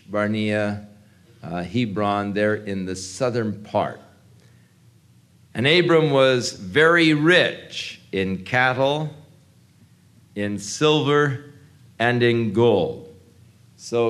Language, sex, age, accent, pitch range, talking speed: English, male, 50-69, American, 110-145 Hz, 90 wpm